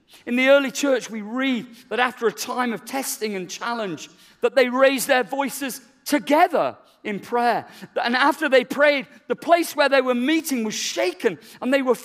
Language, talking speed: English, 185 wpm